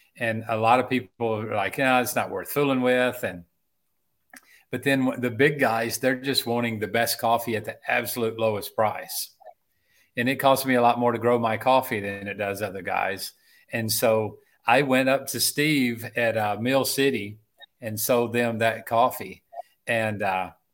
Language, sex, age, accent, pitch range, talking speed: English, male, 40-59, American, 110-125 Hz, 190 wpm